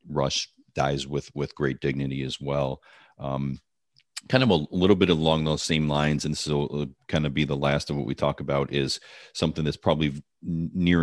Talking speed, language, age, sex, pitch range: 190 wpm, English, 40-59, male, 70-80 Hz